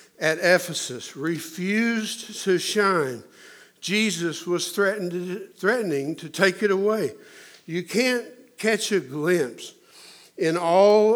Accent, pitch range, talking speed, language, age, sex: American, 155-195 Hz, 110 wpm, English, 60-79, male